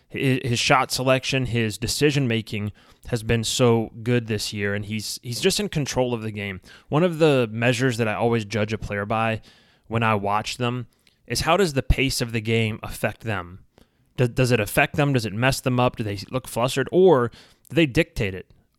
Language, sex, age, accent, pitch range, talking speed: English, male, 20-39, American, 110-125 Hz, 205 wpm